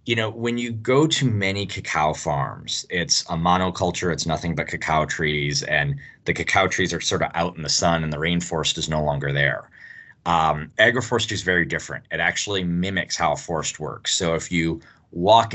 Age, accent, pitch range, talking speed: 30-49, American, 80-100 Hz, 195 wpm